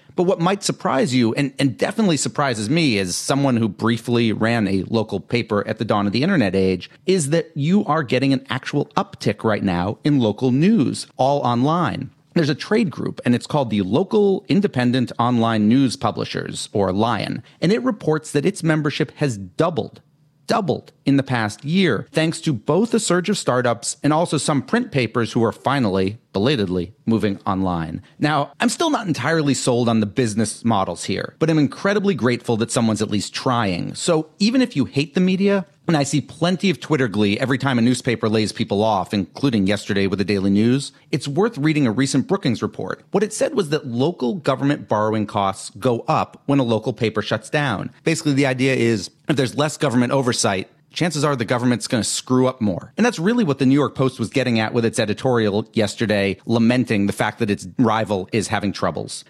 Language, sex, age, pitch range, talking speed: English, male, 40-59, 110-155 Hz, 200 wpm